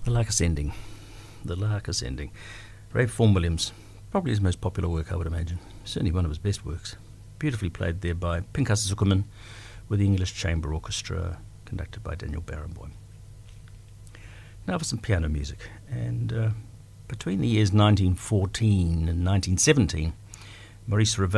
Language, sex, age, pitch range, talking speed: English, male, 60-79, 95-110 Hz, 140 wpm